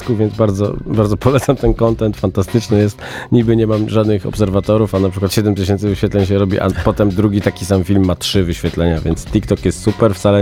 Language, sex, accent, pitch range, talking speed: Polish, male, native, 90-110 Hz, 195 wpm